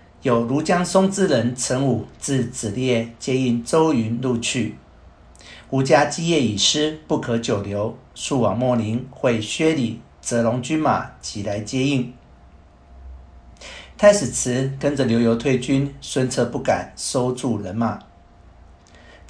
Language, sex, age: Chinese, male, 50-69